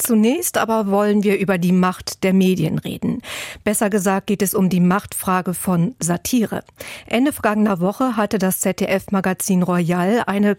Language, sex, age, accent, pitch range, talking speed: German, female, 50-69, German, 190-225 Hz, 155 wpm